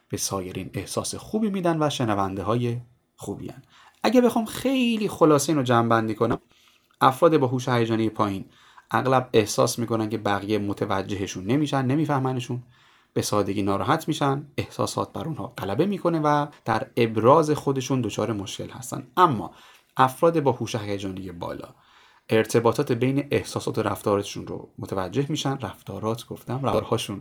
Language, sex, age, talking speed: Persian, male, 30-49, 135 wpm